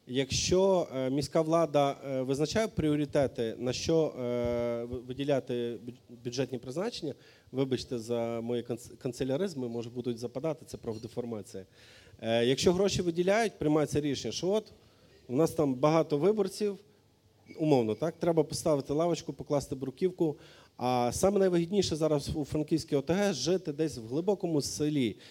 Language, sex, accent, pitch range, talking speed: Ukrainian, male, native, 120-160 Hz, 120 wpm